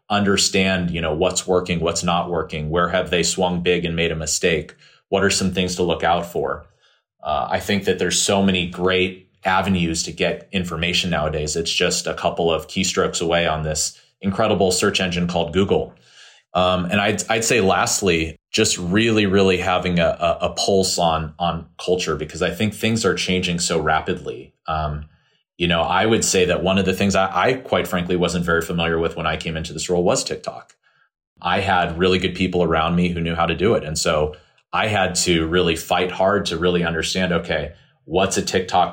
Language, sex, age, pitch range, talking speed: English, male, 30-49, 80-95 Hz, 205 wpm